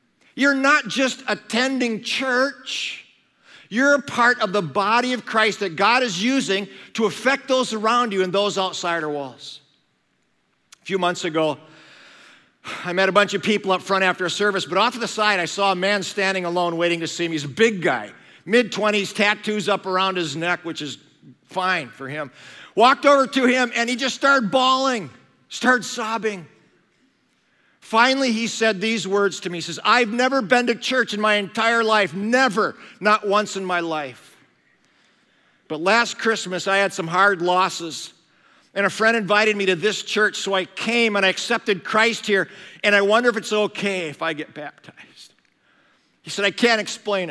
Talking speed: 185 wpm